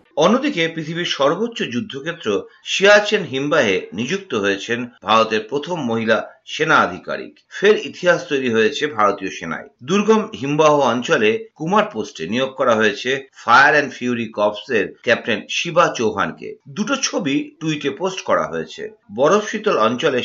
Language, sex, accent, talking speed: Bengali, male, native, 130 wpm